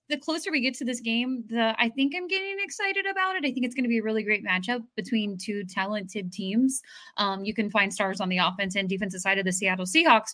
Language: English